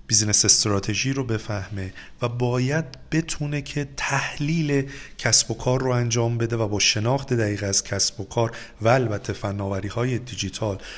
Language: Persian